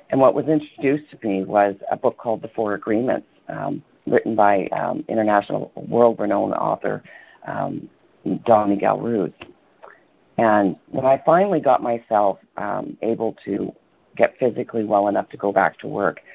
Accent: American